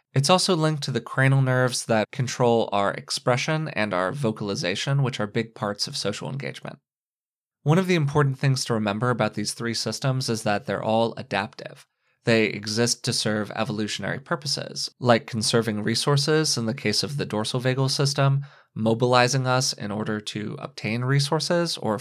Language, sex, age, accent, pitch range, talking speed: English, male, 20-39, American, 115-145 Hz, 170 wpm